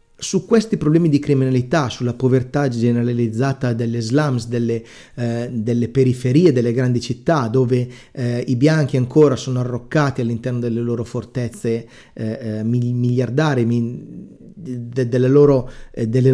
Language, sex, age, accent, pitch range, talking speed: Italian, male, 30-49, native, 120-155 Hz, 110 wpm